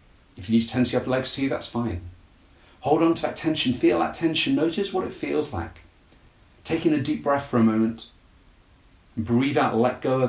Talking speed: 215 wpm